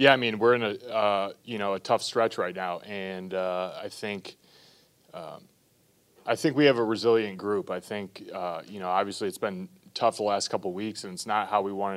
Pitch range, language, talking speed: 95-120 Hz, English, 235 wpm